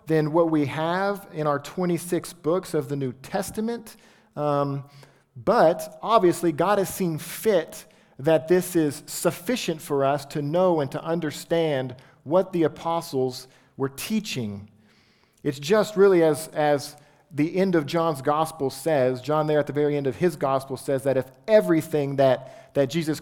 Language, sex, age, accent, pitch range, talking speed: English, male, 40-59, American, 130-170 Hz, 160 wpm